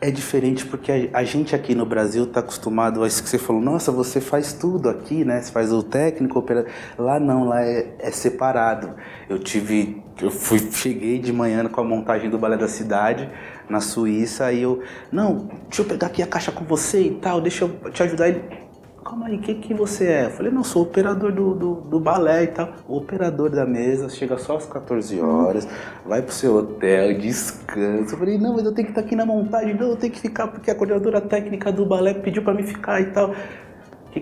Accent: Brazilian